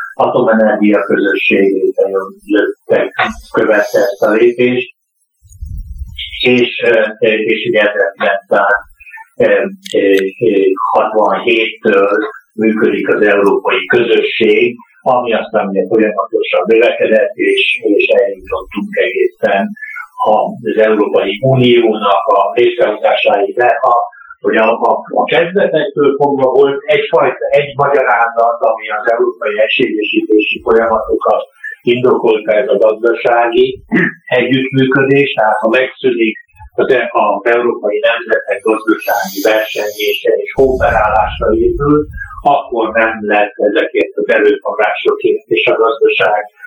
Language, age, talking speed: Hungarian, 60-79, 95 wpm